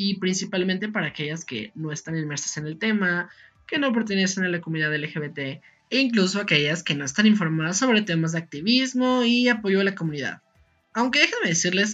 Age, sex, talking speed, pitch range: 20-39, male, 185 wpm, 160-195 Hz